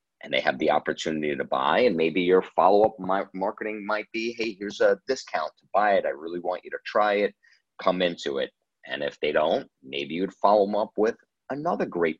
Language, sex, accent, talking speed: English, male, American, 215 wpm